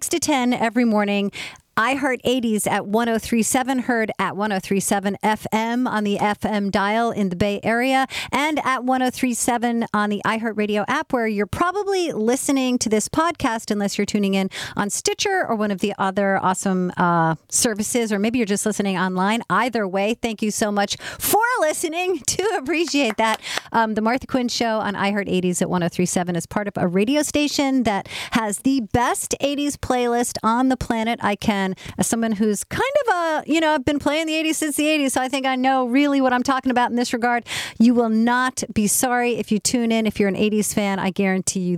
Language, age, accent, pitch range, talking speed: English, 40-59, American, 205-265 Hz, 200 wpm